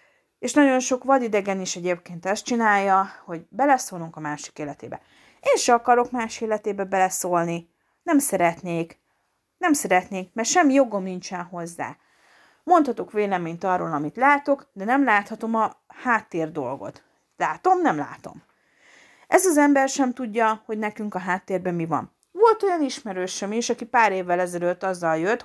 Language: English